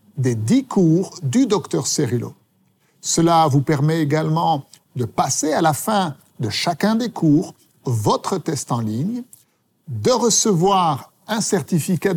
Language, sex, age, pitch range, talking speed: French, male, 60-79, 140-195 Hz, 135 wpm